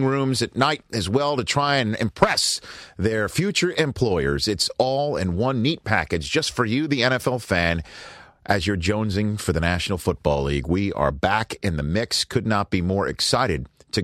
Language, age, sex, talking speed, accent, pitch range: English, 40-59, male, 190 wpm, American, 85-110 Hz